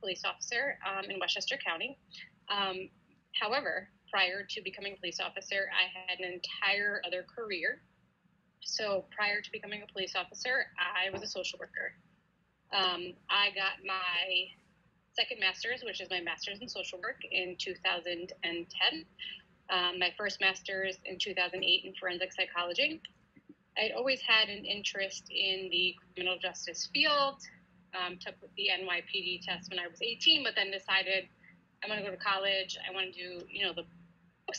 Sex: female